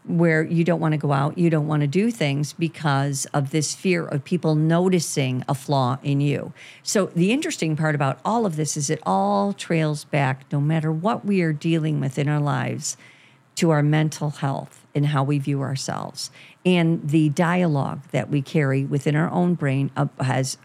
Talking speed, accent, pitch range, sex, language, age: 195 wpm, American, 140-165 Hz, female, English, 50-69